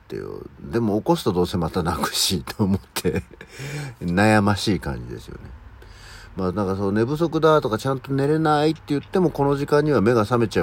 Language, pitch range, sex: Japanese, 85-135 Hz, male